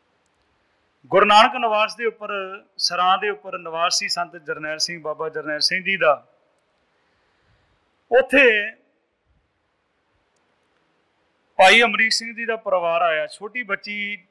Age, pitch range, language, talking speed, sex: 40-59, 180-225 Hz, Punjabi, 110 wpm, male